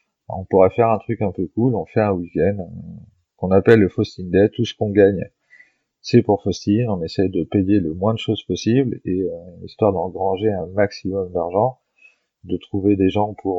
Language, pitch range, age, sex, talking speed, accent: French, 90-105 Hz, 30-49, male, 205 wpm, French